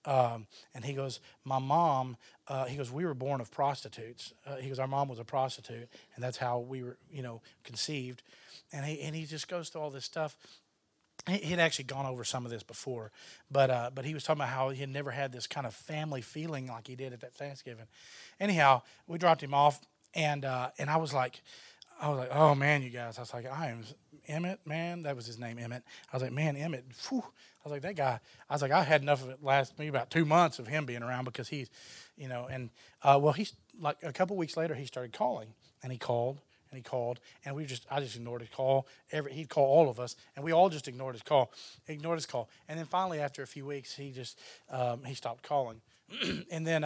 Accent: American